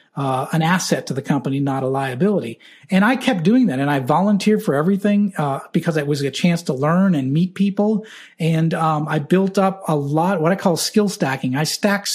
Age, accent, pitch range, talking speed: 40-59, American, 150-195 Hz, 215 wpm